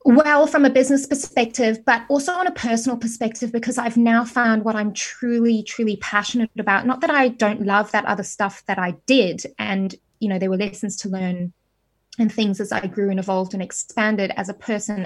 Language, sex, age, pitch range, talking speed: English, female, 20-39, 220-255 Hz, 205 wpm